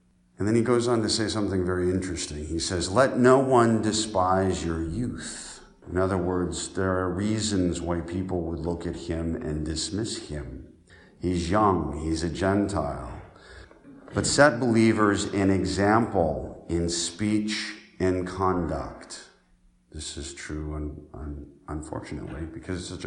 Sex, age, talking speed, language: male, 50-69, 140 wpm, English